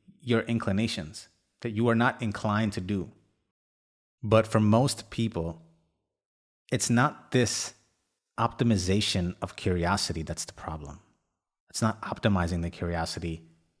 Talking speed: 115 wpm